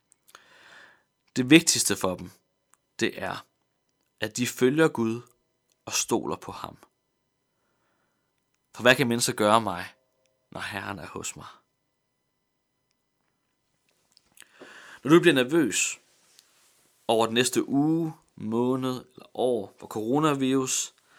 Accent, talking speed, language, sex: native, 110 wpm, Danish, male